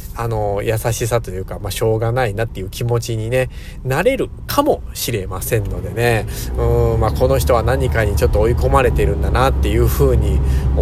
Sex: male